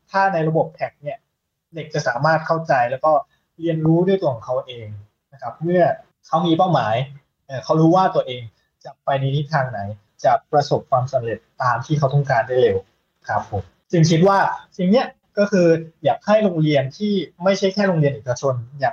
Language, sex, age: Thai, male, 20-39